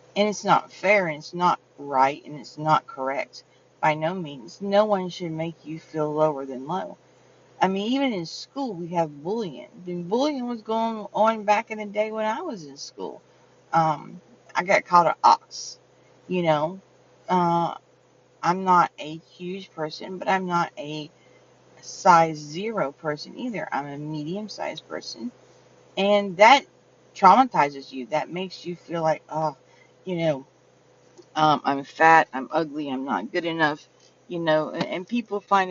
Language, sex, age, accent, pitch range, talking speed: English, female, 40-59, American, 155-200 Hz, 165 wpm